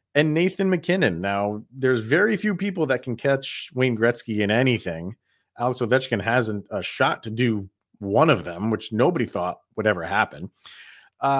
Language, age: English, 30-49